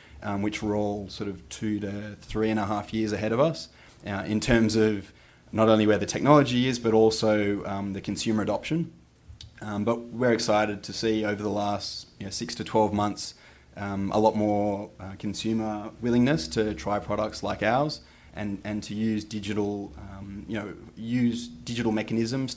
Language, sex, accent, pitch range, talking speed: English, male, Australian, 100-110 Hz, 185 wpm